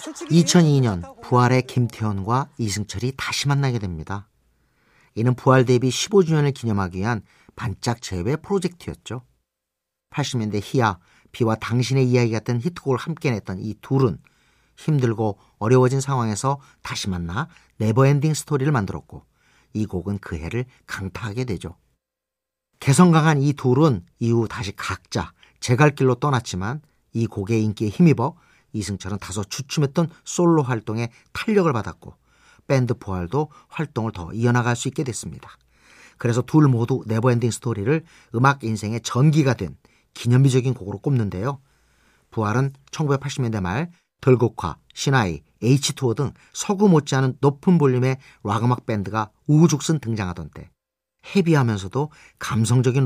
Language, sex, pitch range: Korean, male, 110-140 Hz